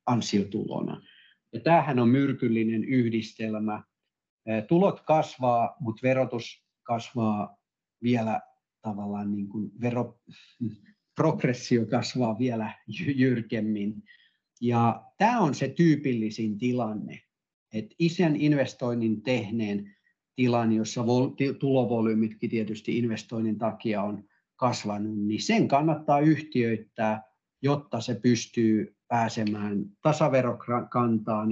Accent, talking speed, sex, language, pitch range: native, 90 wpm, male, Finnish, 105-125 Hz